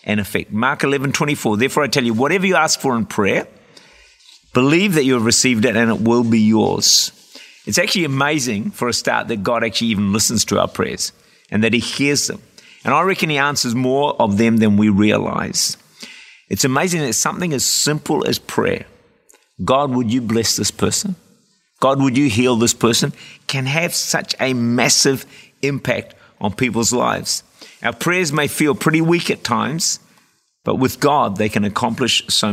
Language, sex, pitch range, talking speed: English, male, 115-160 Hz, 185 wpm